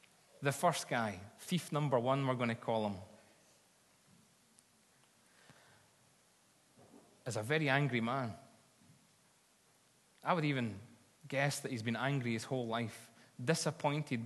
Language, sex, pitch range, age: English, male, 115-145 Hz, 30-49